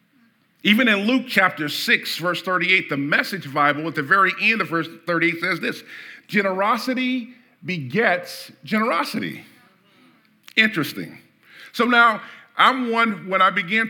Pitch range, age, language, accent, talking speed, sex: 150-210 Hz, 50-69, English, American, 130 wpm, male